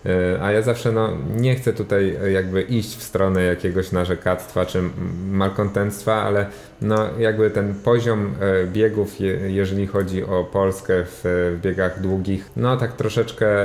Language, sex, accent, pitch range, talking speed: Polish, male, native, 90-100 Hz, 135 wpm